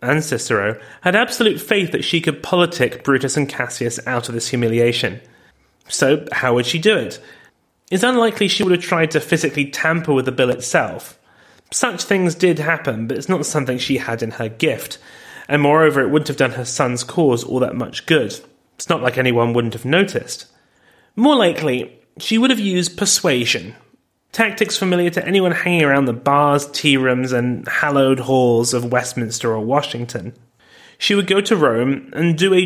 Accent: British